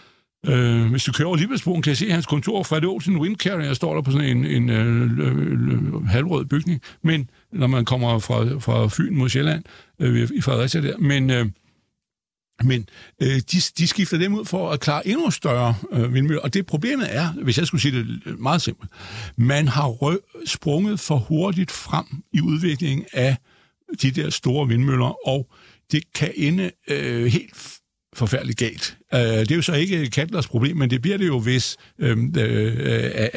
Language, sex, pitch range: Danish, male, 120-160 Hz